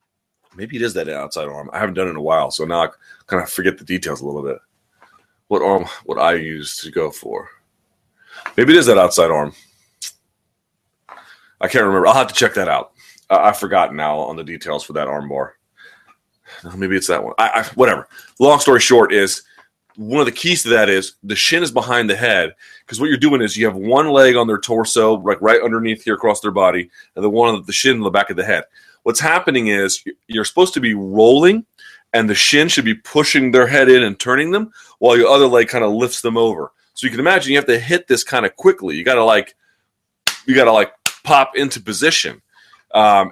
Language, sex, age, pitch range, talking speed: English, male, 30-49, 95-140 Hz, 230 wpm